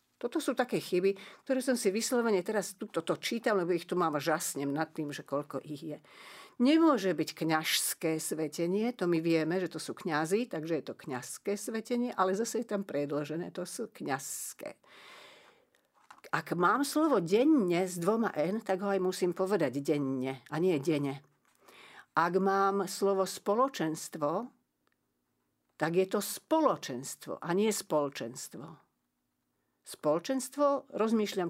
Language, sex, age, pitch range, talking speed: Slovak, female, 50-69, 155-205 Hz, 145 wpm